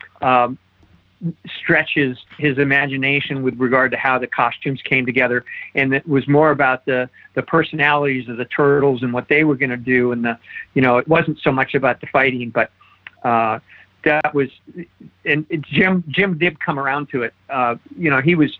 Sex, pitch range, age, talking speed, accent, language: male, 125-150 Hz, 50-69, 185 wpm, American, English